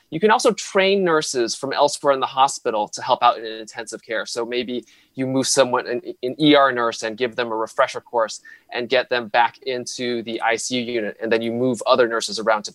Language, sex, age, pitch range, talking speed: English, male, 20-39, 125-155 Hz, 220 wpm